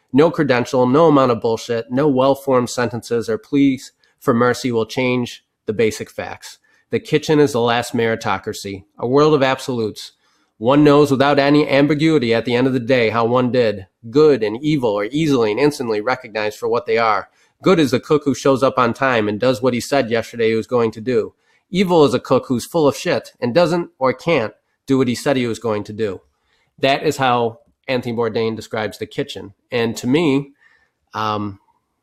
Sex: male